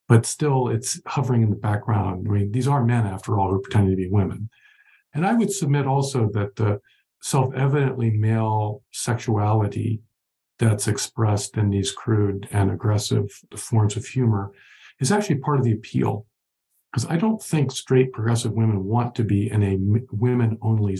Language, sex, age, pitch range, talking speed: English, male, 50-69, 105-130 Hz, 170 wpm